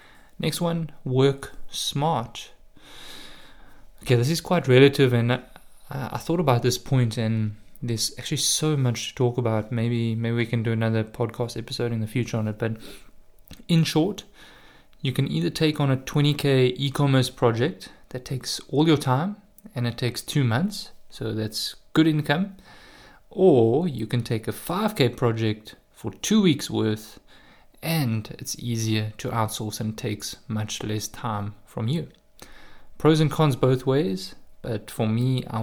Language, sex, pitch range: English, male, 110-140 Hz